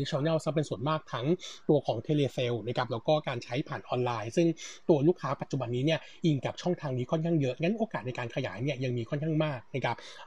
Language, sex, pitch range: Thai, male, 130-165 Hz